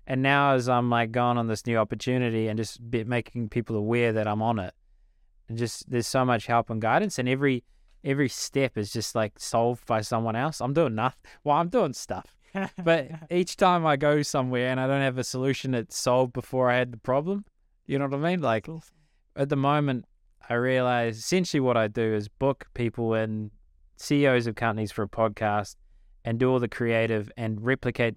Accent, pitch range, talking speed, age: Australian, 110-130 Hz, 205 wpm, 20-39